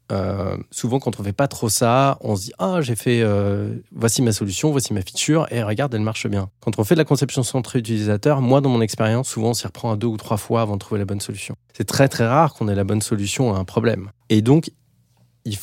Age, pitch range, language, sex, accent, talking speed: 20-39, 105-125 Hz, French, male, French, 275 wpm